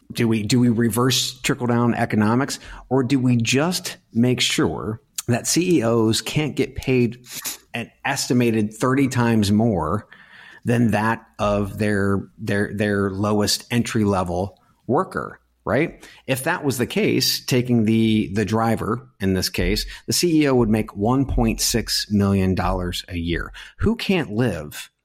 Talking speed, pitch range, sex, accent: 140 wpm, 95-125 Hz, male, American